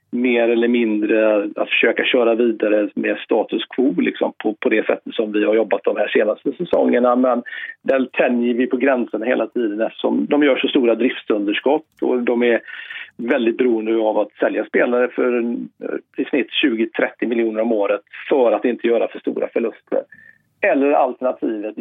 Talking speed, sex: 170 wpm, male